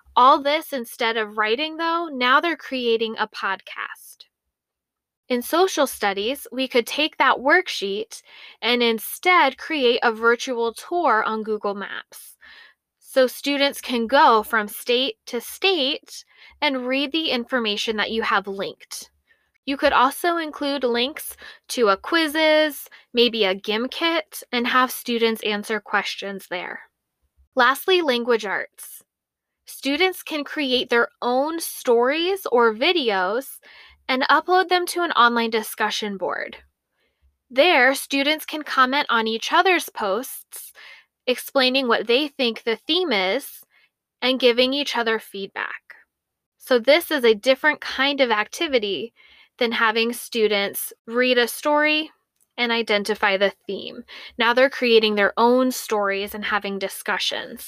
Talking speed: 130 wpm